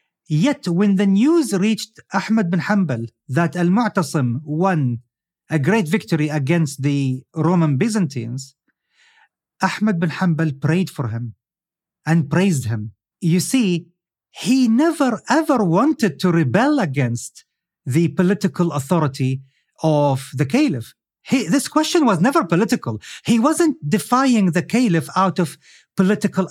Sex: male